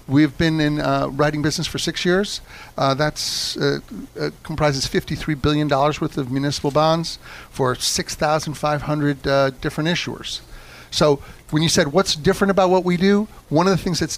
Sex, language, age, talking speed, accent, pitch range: male, English, 50-69, 155 wpm, American, 140-165 Hz